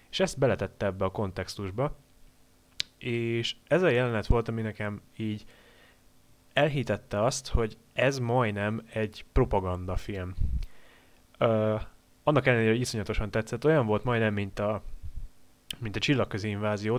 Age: 20-39